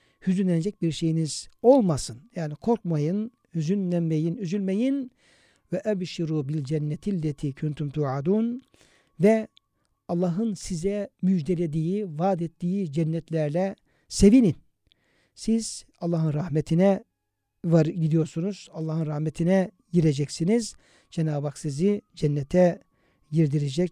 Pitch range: 155-190 Hz